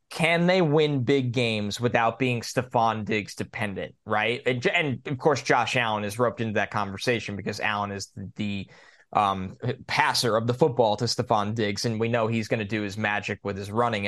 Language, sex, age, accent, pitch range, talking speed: English, male, 20-39, American, 110-145 Hz, 200 wpm